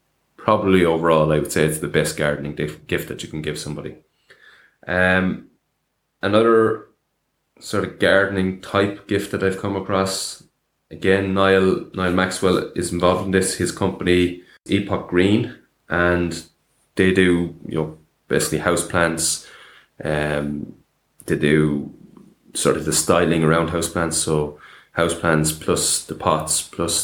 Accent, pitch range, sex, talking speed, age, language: Irish, 80-95 Hz, male, 135 wpm, 20-39, English